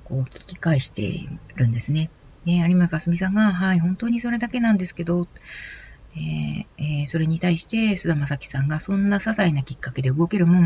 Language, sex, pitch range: Japanese, female, 145-185 Hz